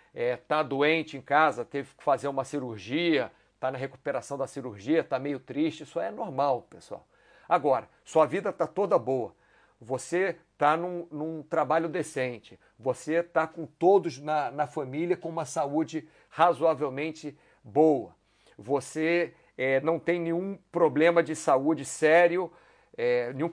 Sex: male